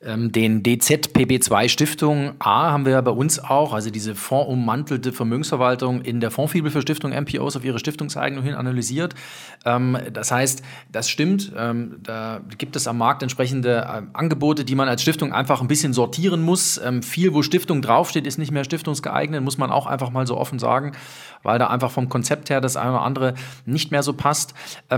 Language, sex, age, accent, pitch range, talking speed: German, male, 40-59, German, 130-165 Hz, 185 wpm